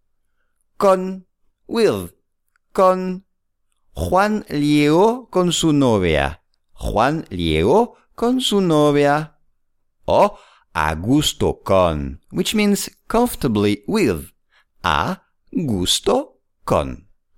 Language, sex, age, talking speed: English, male, 50-69, 85 wpm